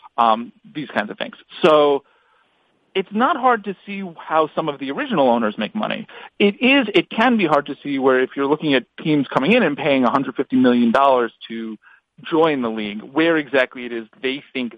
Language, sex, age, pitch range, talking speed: English, male, 40-59, 125-185 Hz, 200 wpm